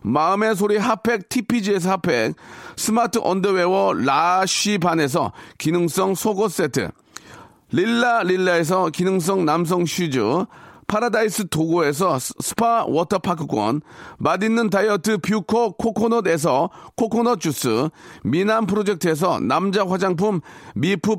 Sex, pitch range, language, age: male, 175-230 Hz, Korean, 40-59